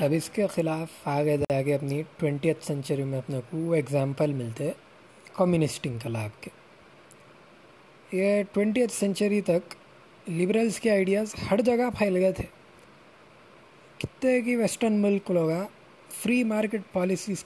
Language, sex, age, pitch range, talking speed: Urdu, male, 20-39, 145-195 Hz, 140 wpm